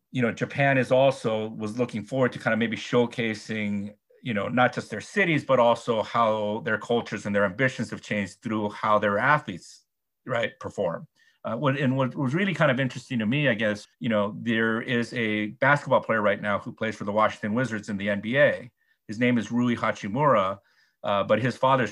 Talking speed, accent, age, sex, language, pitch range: 205 wpm, American, 40-59, male, English, 105-130 Hz